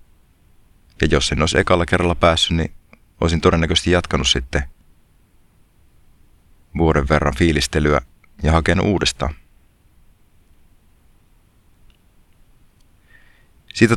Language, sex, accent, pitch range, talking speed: Finnish, male, native, 75-95 Hz, 80 wpm